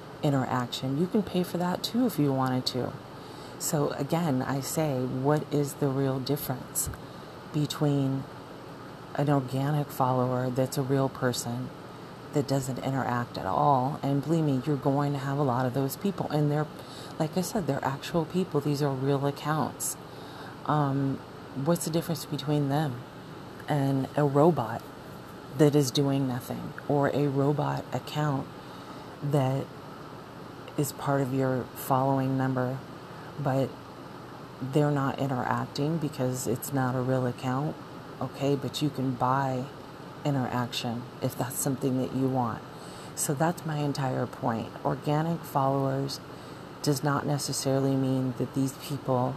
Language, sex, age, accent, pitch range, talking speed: English, female, 40-59, American, 130-150 Hz, 140 wpm